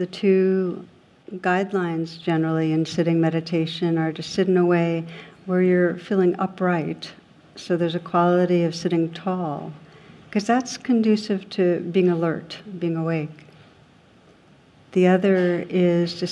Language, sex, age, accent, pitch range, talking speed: English, female, 60-79, American, 160-180 Hz, 130 wpm